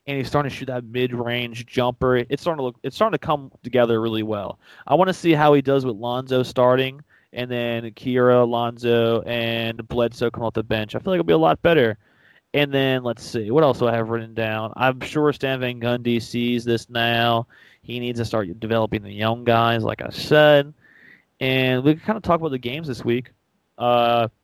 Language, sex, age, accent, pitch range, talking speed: English, male, 20-39, American, 115-135 Hz, 220 wpm